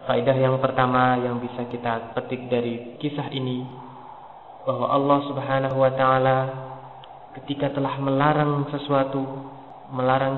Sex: male